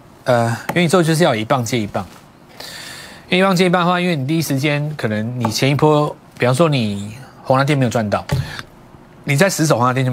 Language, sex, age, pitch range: Chinese, male, 30-49, 110-160 Hz